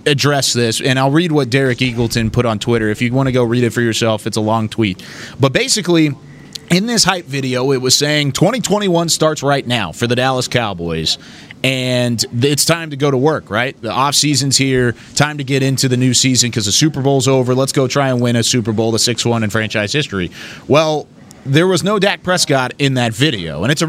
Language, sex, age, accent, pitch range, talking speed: English, male, 30-49, American, 125-155 Hz, 225 wpm